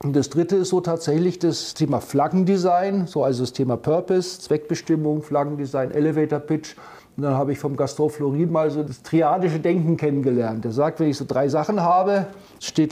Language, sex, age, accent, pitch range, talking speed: German, male, 50-69, German, 140-170 Hz, 180 wpm